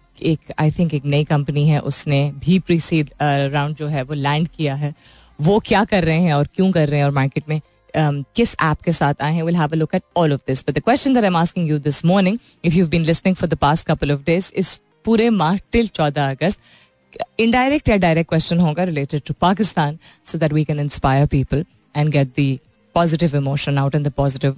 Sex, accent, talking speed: female, native, 165 wpm